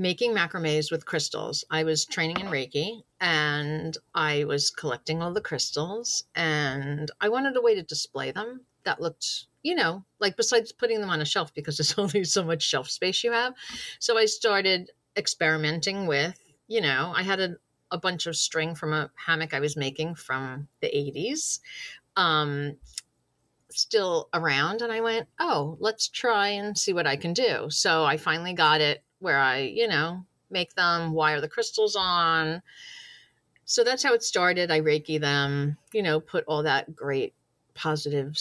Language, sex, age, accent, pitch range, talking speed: English, female, 40-59, American, 150-190 Hz, 175 wpm